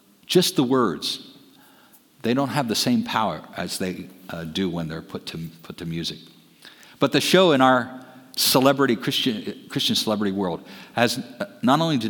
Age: 50-69